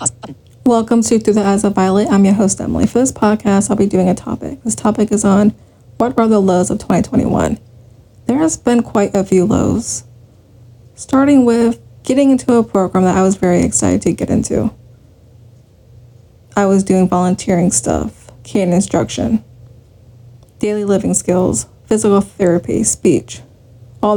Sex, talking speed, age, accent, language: female, 160 wpm, 20-39, American, English